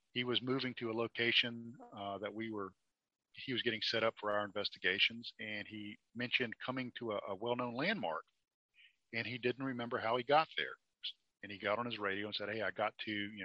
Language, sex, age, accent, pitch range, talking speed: English, male, 50-69, American, 100-120 Hz, 215 wpm